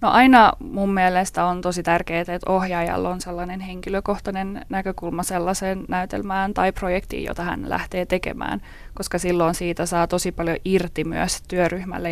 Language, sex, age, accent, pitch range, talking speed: Finnish, female, 20-39, native, 170-190 Hz, 150 wpm